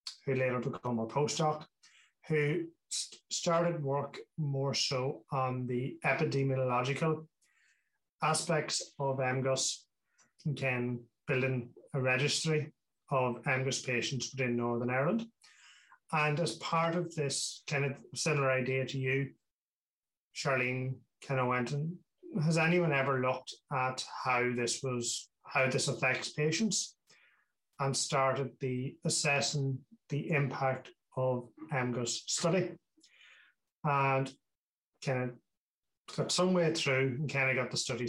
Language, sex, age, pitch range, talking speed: English, male, 30-49, 125-155 Hz, 120 wpm